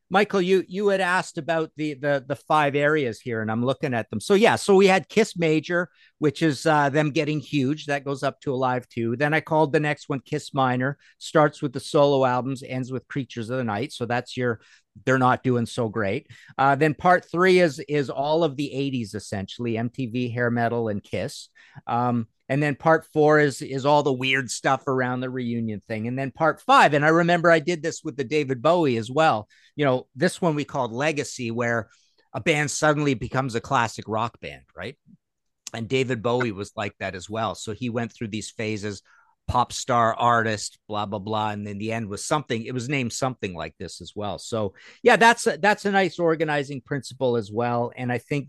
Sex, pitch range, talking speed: male, 115-155 Hz, 220 wpm